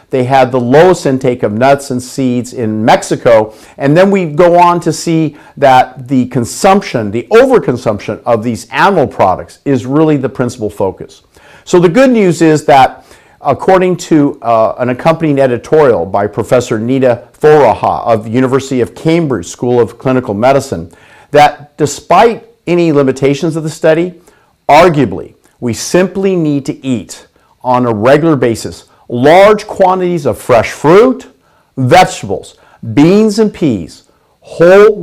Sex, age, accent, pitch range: male, 50-69, American, 125-165 Hz